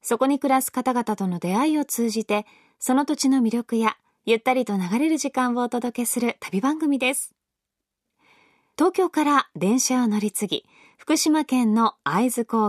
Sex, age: female, 20-39